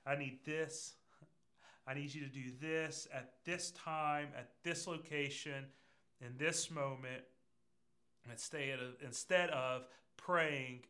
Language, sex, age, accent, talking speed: English, male, 40-59, American, 140 wpm